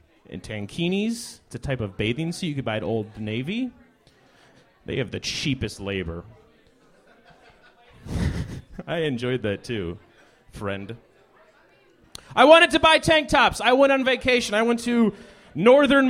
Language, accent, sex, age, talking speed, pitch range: English, American, male, 30-49, 140 wpm, 190-255 Hz